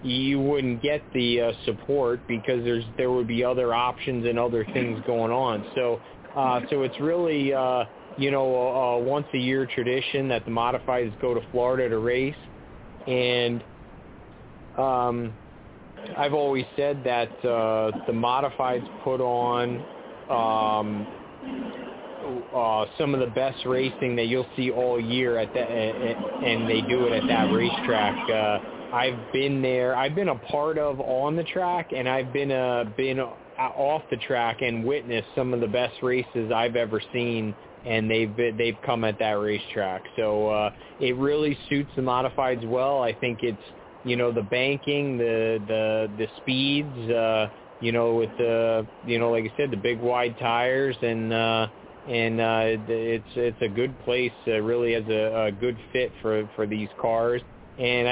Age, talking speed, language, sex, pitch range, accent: 30-49, 170 wpm, English, male, 115-130 Hz, American